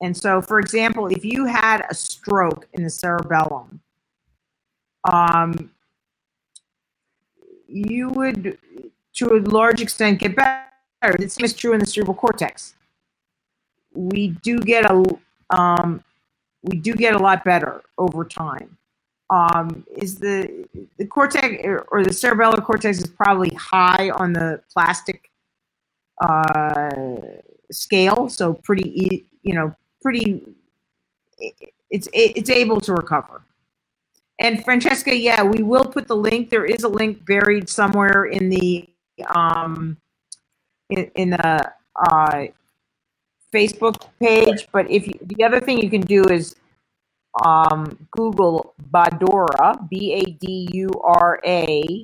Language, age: English, 50-69